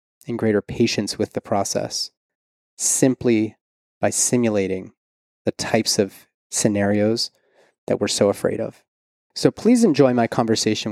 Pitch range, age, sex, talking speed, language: 105-130 Hz, 30-49, male, 125 wpm, English